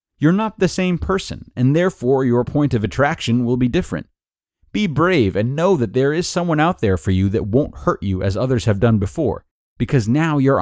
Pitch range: 100-140 Hz